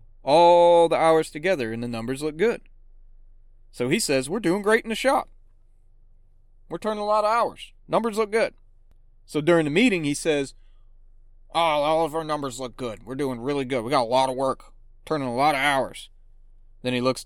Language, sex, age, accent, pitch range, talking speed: English, male, 30-49, American, 100-150 Hz, 200 wpm